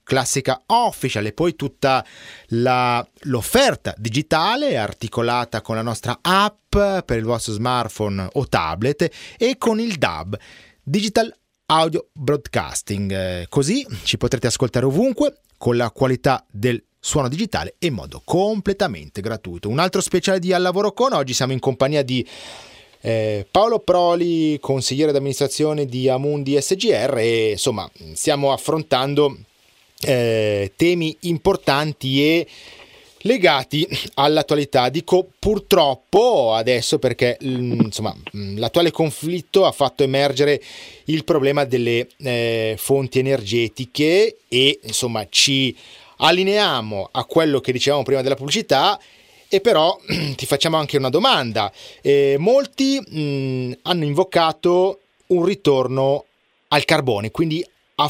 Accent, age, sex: native, 30-49, male